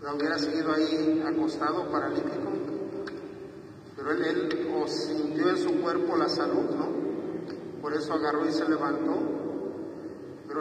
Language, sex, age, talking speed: Spanish, male, 50-69, 135 wpm